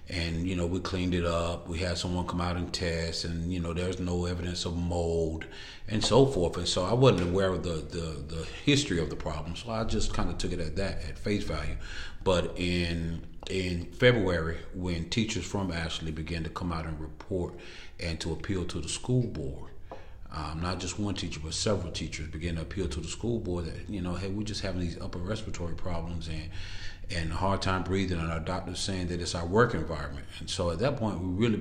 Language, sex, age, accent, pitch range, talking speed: English, male, 40-59, American, 85-95 Hz, 225 wpm